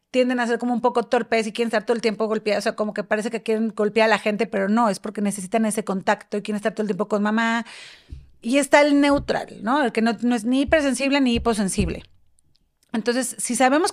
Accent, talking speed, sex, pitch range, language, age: Mexican, 245 wpm, female, 210-255 Hz, Spanish, 30-49